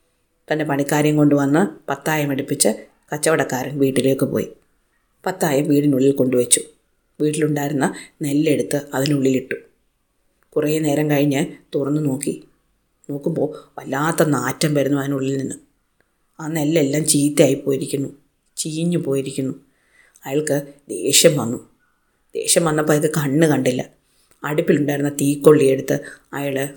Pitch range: 140-160 Hz